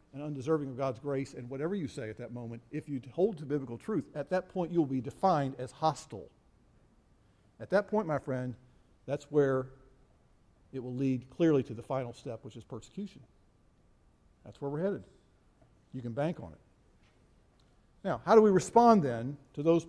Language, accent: English, American